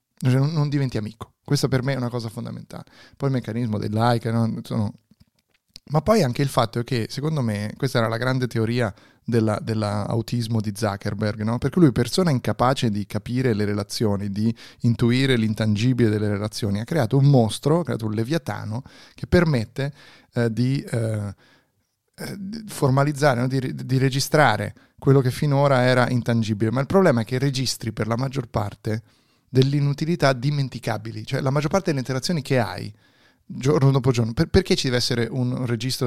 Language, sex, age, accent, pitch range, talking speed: Italian, male, 30-49, native, 115-140 Hz, 160 wpm